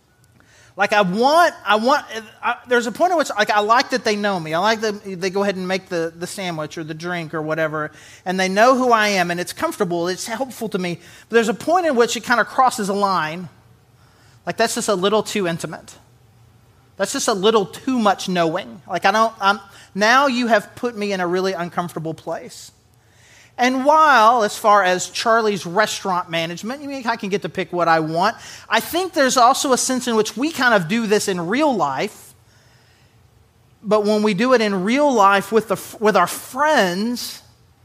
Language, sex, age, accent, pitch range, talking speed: English, male, 30-49, American, 175-245 Hz, 210 wpm